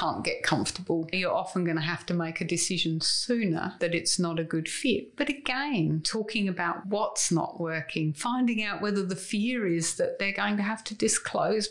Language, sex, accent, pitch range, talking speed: English, female, British, 175-215 Hz, 200 wpm